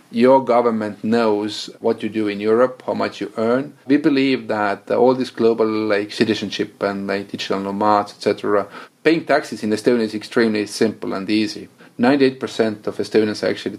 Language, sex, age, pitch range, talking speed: English, male, 30-49, 105-125 Hz, 170 wpm